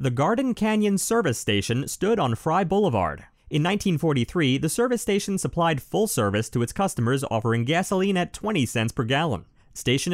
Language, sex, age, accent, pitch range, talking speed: English, male, 30-49, American, 115-185 Hz, 165 wpm